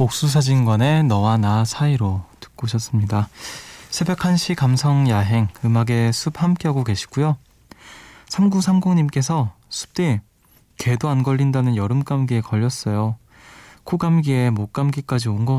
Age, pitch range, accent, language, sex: 20-39, 110-145 Hz, native, Korean, male